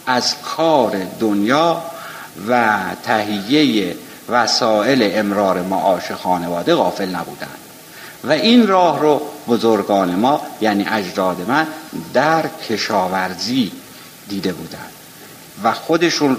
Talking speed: 95 wpm